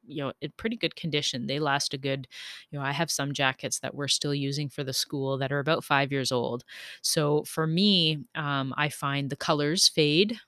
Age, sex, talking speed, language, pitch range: 30-49, female, 220 wpm, English, 140-170 Hz